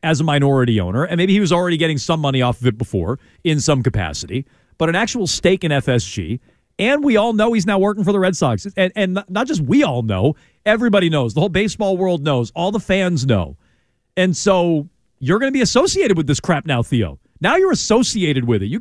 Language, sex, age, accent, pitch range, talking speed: English, male, 40-59, American, 140-200 Hz, 230 wpm